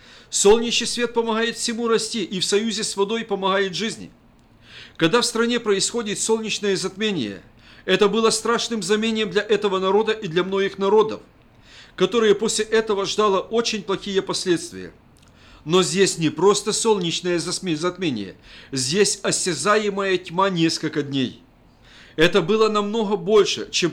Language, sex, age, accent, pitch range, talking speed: Russian, male, 50-69, native, 180-225 Hz, 130 wpm